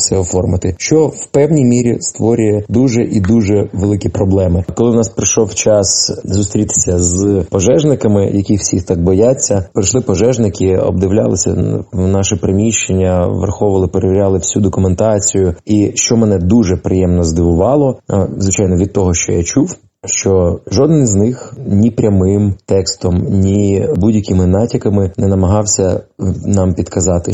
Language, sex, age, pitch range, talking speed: Ukrainian, male, 20-39, 90-105 Hz, 130 wpm